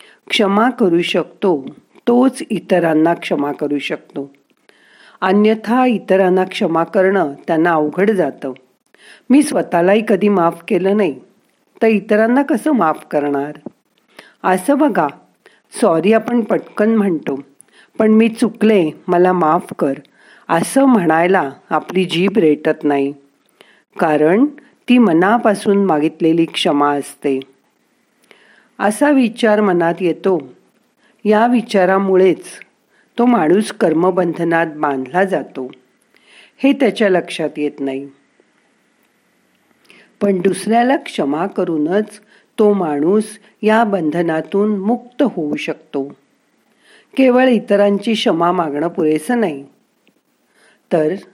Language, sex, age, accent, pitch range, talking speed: Marathi, female, 50-69, native, 165-225 Hz, 100 wpm